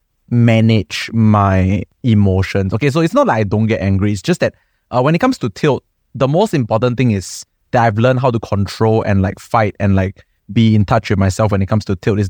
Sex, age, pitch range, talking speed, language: male, 20-39, 100-125 Hz, 235 wpm, English